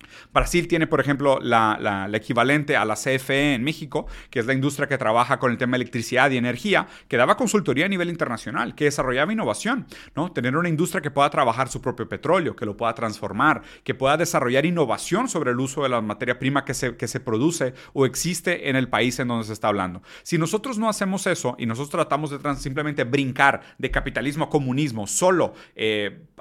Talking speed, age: 210 wpm, 30-49